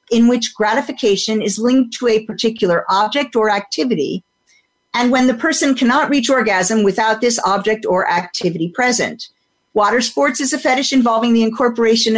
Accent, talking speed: American, 160 wpm